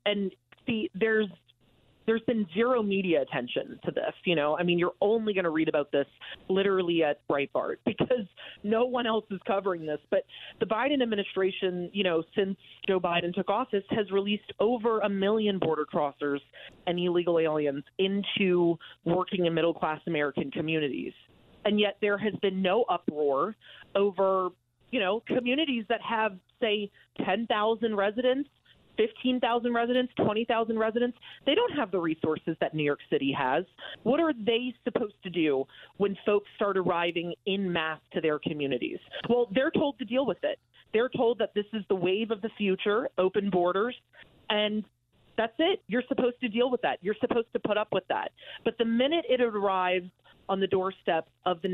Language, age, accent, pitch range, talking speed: English, 30-49, American, 170-230 Hz, 175 wpm